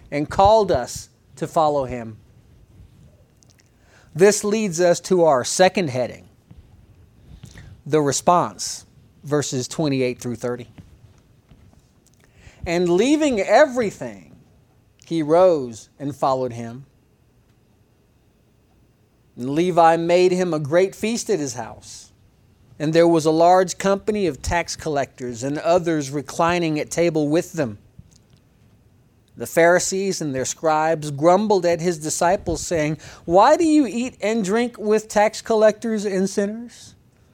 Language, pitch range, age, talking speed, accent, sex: English, 120-200 Hz, 40-59, 120 wpm, American, male